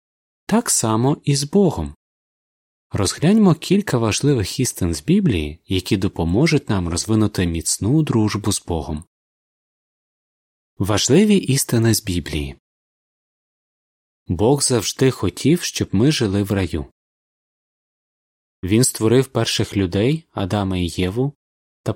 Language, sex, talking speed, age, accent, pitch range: Ukrainian, male, 105 wpm, 20-39, native, 90-130 Hz